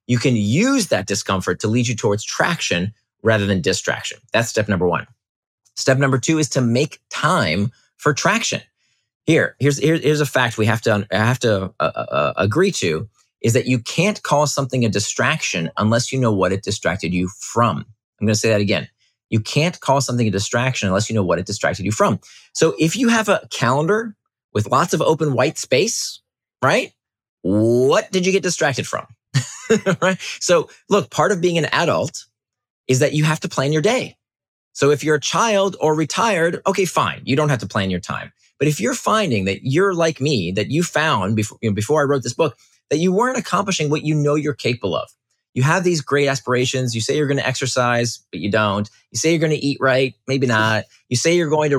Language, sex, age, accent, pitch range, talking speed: English, male, 30-49, American, 110-155 Hz, 215 wpm